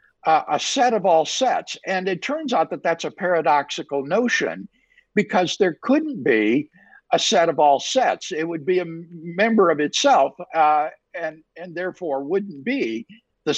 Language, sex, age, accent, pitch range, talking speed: English, male, 60-79, American, 155-250 Hz, 170 wpm